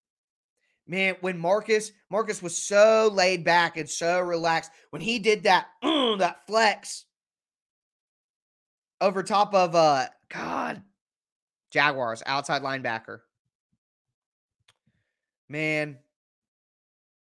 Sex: male